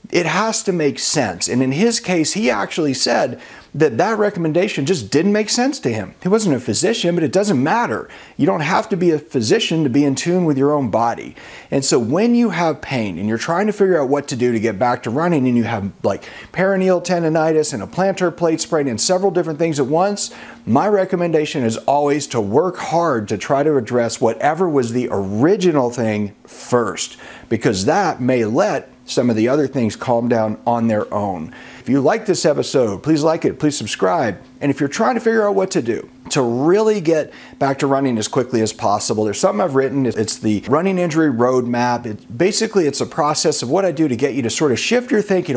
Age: 40-59